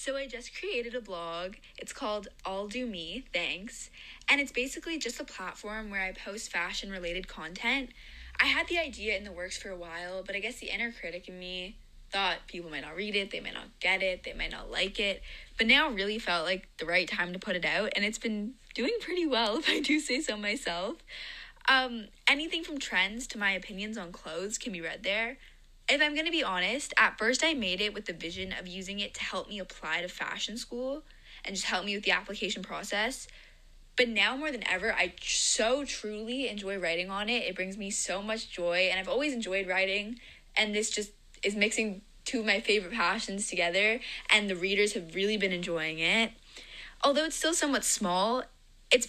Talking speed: 215 wpm